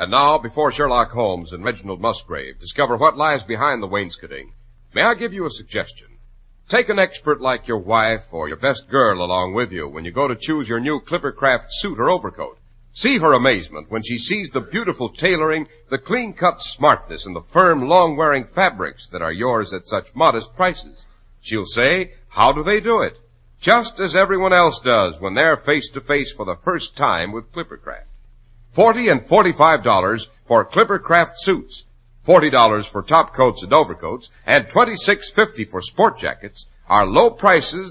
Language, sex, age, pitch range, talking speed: English, male, 60-79, 110-170 Hz, 175 wpm